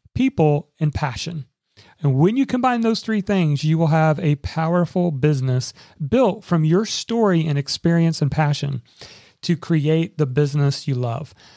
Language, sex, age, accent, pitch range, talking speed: English, male, 40-59, American, 140-185 Hz, 155 wpm